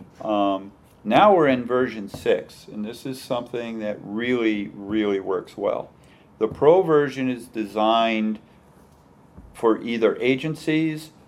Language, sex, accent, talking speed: English, male, American, 120 wpm